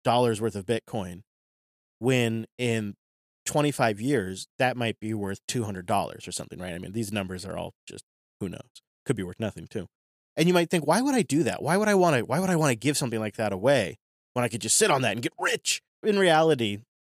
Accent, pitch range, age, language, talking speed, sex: American, 105-140 Hz, 30-49, English, 230 wpm, male